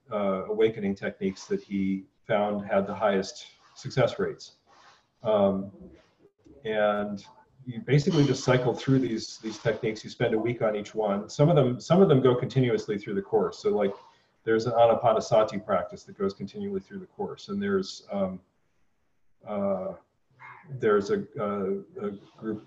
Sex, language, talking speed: male, English, 155 wpm